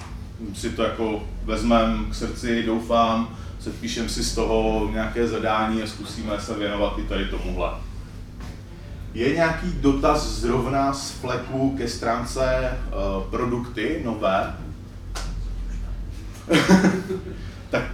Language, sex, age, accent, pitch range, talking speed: Czech, male, 30-49, native, 95-130 Hz, 105 wpm